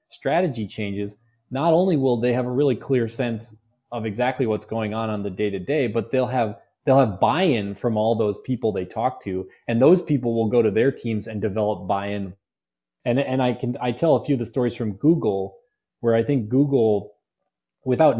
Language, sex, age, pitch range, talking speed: English, male, 20-39, 105-130 Hz, 210 wpm